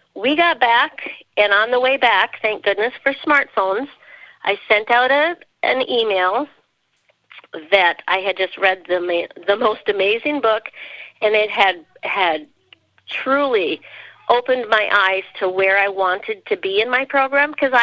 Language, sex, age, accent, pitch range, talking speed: English, female, 50-69, American, 195-270 Hz, 155 wpm